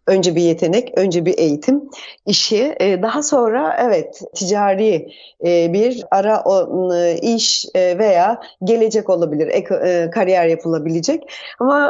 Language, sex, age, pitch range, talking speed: Turkish, female, 30-49, 180-255 Hz, 100 wpm